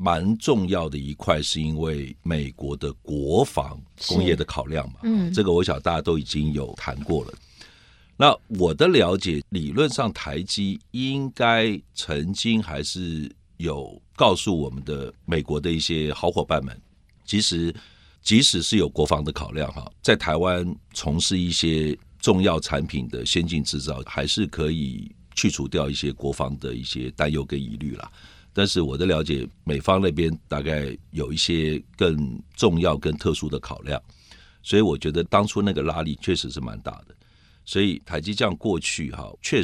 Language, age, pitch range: Chinese, 50-69, 75-95 Hz